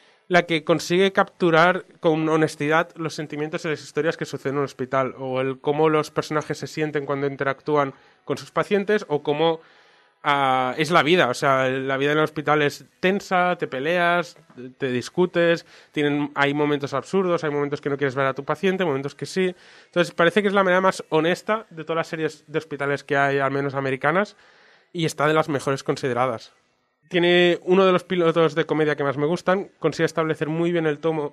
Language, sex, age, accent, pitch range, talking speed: Spanish, male, 20-39, Spanish, 140-170 Hz, 200 wpm